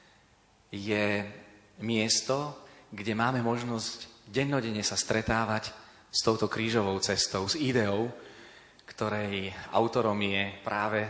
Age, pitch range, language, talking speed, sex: 30-49, 105-120 Hz, Slovak, 95 wpm, male